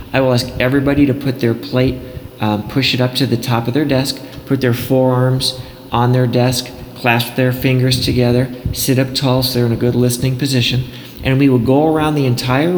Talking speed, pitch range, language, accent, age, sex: 210 wpm, 115-135 Hz, English, American, 40-59, male